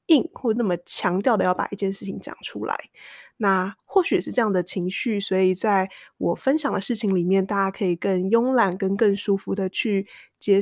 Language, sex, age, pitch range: Chinese, female, 20-39, 190-230 Hz